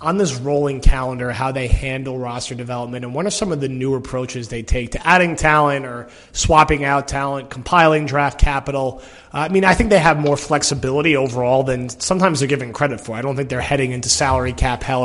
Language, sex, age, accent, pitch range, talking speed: English, male, 30-49, American, 125-150 Hz, 215 wpm